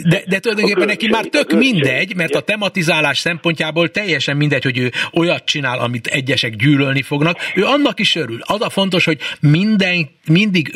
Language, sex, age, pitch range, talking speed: Hungarian, male, 60-79, 140-195 Hz, 165 wpm